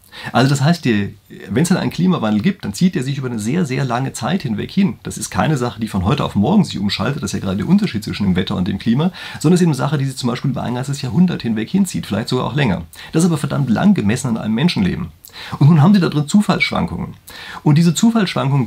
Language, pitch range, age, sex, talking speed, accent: German, 120-180 Hz, 40-59, male, 265 wpm, German